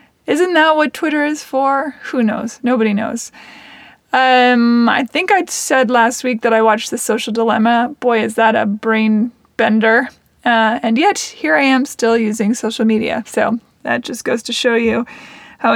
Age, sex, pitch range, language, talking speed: 20-39, female, 225-265 Hz, English, 180 wpm